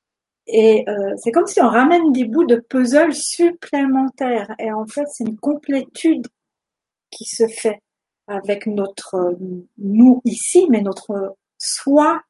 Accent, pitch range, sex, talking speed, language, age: French, 205-245 Hz, female, 135 wpm, French, 50-69